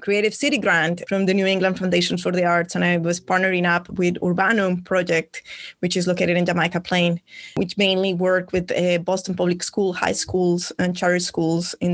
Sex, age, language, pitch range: female, 20-39, English, 180-215 Hz